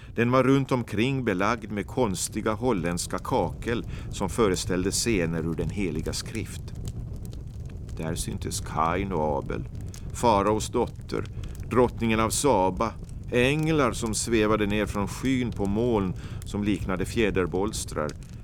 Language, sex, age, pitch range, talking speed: Swedish, male, 50-69, 95-115 Hz, 120 wpm